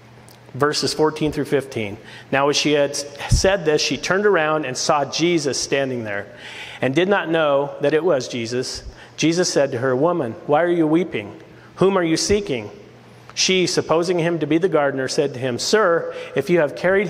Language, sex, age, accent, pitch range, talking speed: English, male, 40-59, American, 135-170 Hz, 190 wpm